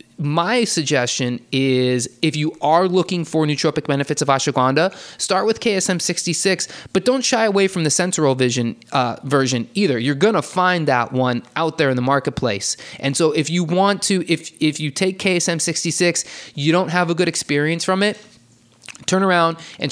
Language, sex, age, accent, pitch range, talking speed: English, male, 20-39, American, 135-175 Hz, 175 wpm